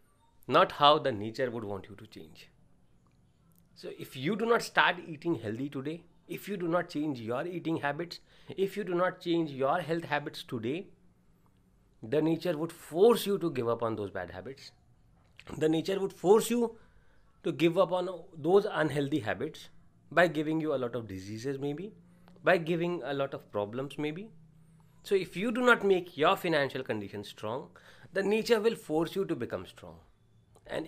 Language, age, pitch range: English, 30-49, 130-180 Hz